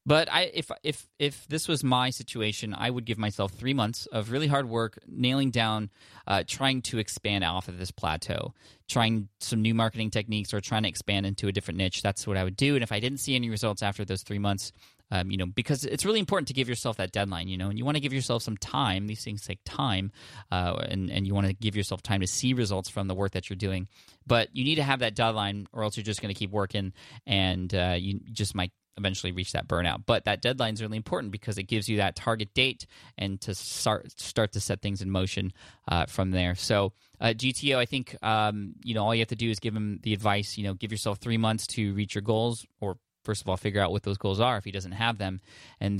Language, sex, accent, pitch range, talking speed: English, male, American, 95-115 Hz, 255 wpm